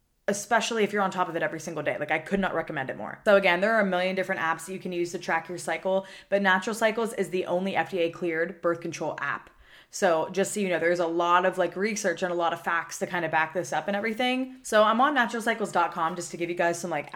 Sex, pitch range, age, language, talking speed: female, 170-200 Hz, 20-39, English, 275 wpm